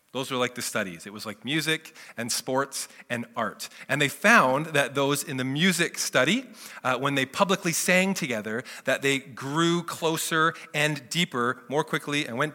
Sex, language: male, English